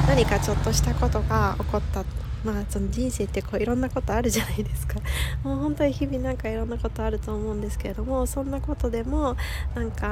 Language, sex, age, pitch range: Japanese, female, 20-39, 75-120 Hz